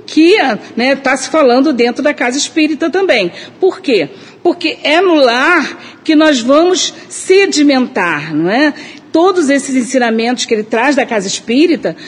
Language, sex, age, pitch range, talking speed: Portuguese, female, 50-69, 235-305 Hz, 155 wpm